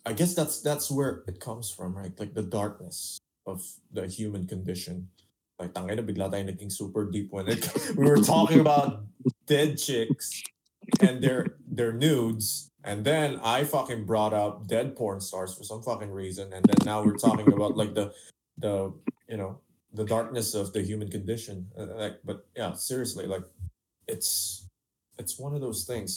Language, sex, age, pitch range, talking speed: Filipino, male, 20-39, 95-110 Hz, 165 wpm